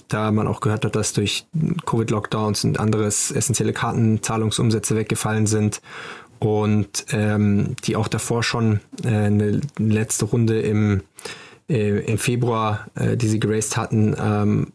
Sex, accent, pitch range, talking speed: male, German, 105-120 Hz, 140 wpm